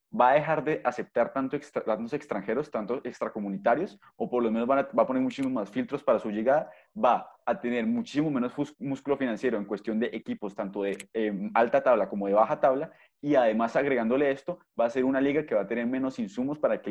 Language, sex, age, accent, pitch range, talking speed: Spanish, male, 20-39, Colombian, 110-135 Hz, 210 wpm